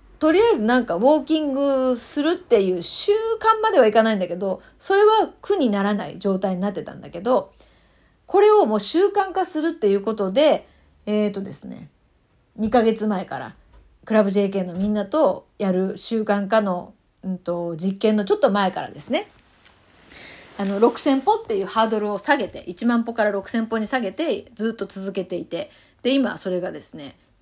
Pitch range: 200-300 Hz